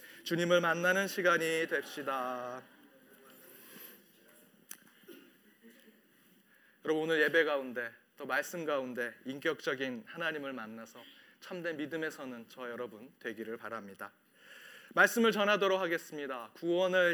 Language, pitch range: Korean, 150-210 Hz